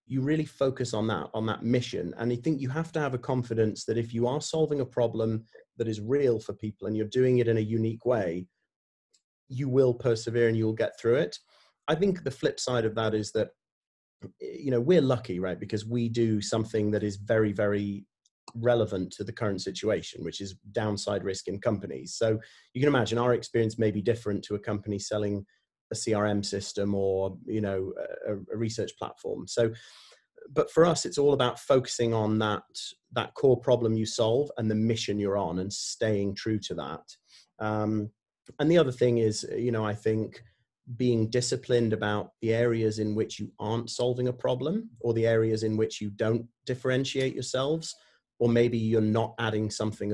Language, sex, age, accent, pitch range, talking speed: English, male, 30-49, British, 105-125 Hz, 195 wpm